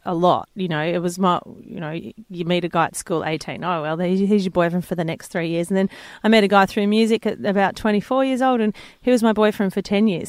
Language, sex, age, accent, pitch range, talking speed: English, female, 30-49, Australian, 185-230 Hz, 280 wpm